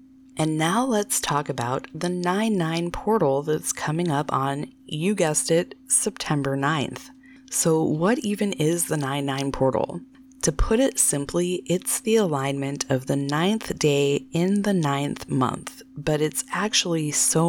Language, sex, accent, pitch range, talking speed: English, female, American, 140-190 Hz, 150 wpm